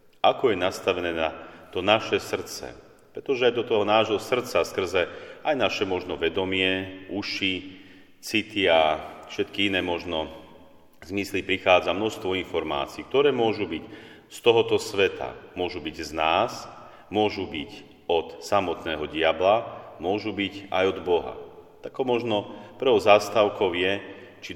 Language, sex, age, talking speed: Slovak, male, 40-59, 130 wpm